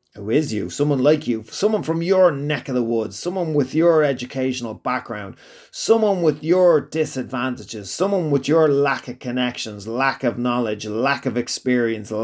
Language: English